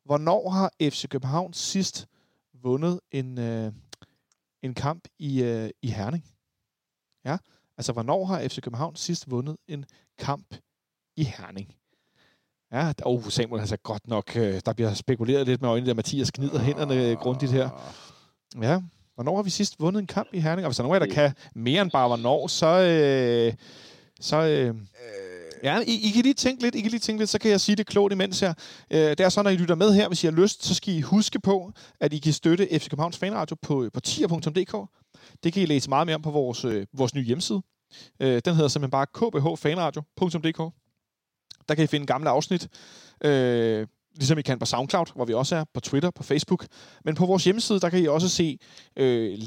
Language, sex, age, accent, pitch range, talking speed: Danish, male, 40-59, native, 125-180 Hz, 205 wpm